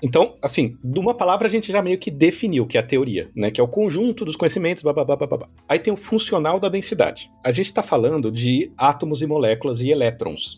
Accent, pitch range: Brazilian, 115-190 Hz